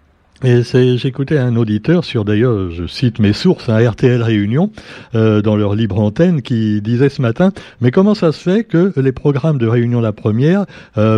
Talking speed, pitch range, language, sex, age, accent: 190 wpm, 110-145 Hz, French, male, 60-79, French